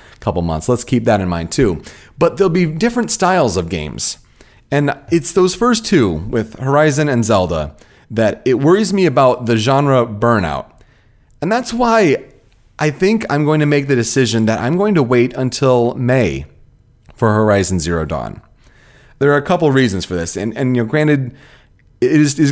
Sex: male